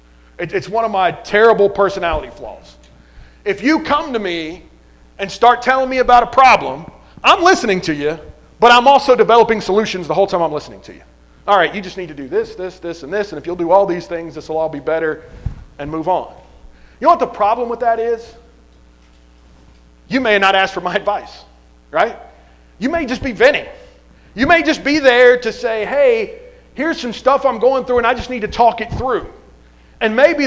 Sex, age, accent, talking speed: male, 40-59, American, 210 wpm